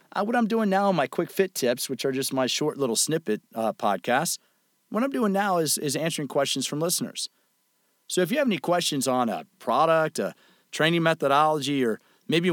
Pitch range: 130-180 Hz